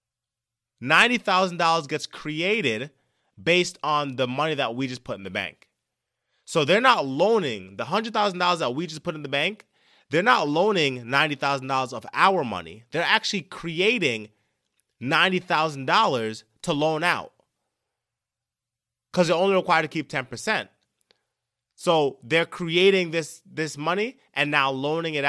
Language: English